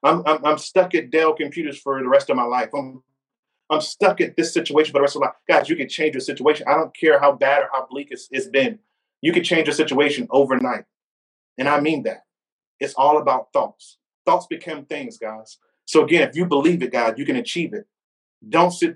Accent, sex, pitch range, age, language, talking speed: American, male, 150-200 Hz, 30-49, English, 230 wpm